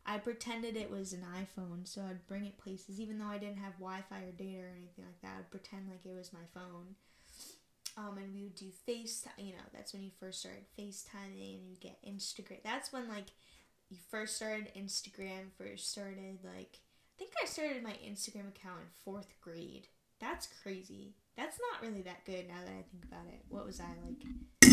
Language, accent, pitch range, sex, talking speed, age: English, American, 190-235 Hz, female, 205 wpm, 10-29